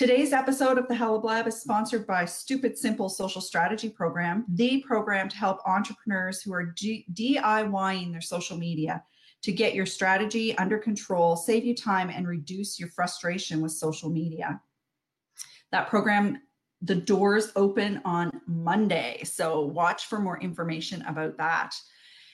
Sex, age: female, 40-59